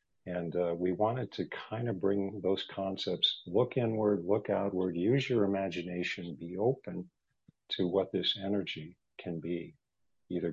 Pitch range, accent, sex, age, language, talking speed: 95-115 Hz, American, male, 50-69, English, 150 wpm